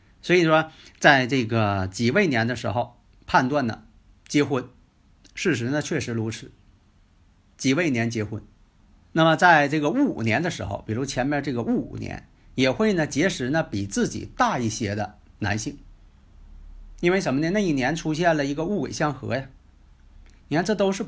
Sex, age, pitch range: male, 50-69, 105-165 Hz